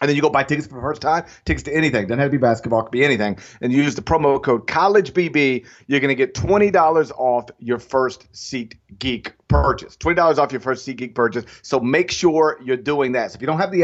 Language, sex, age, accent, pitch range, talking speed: English, male, 40-59, American, 130-175 Hz, 245 wpm